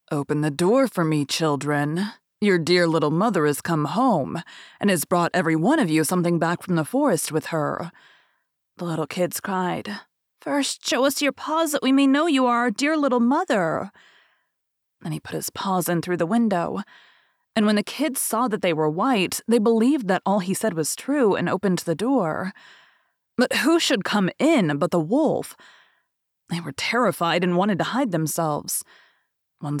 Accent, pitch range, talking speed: American, 170-240 Hz, 185 wpm